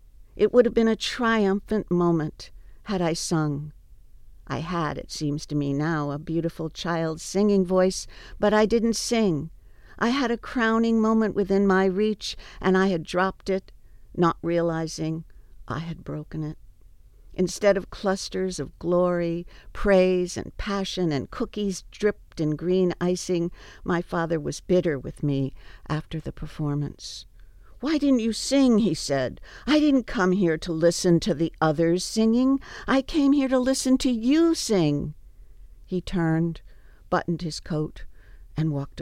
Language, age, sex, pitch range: English, 60-79, female, 155-205 Hz